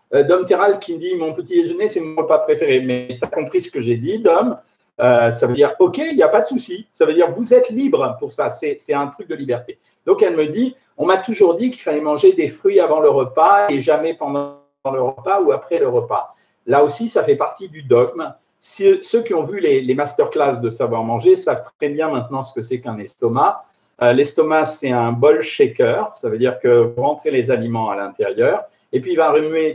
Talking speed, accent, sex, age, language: 255 wpm, French, male, 50-69, French